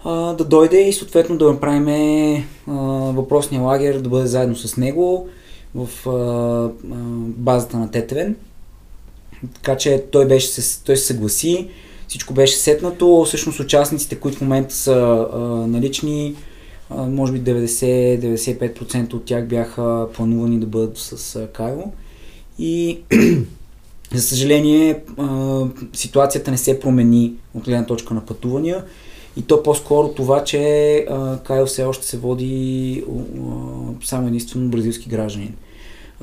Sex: male